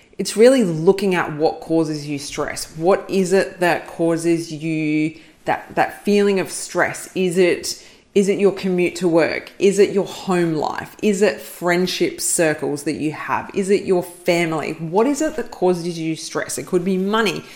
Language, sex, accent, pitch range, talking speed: English, female, Australian, 165-200 Hz, 185 wpm